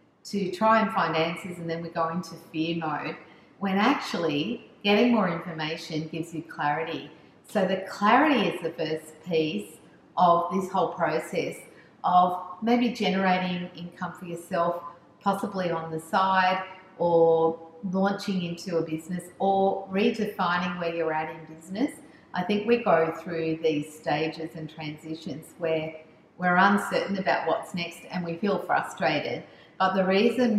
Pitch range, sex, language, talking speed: 165-195 Hz, female, English, 145 wpm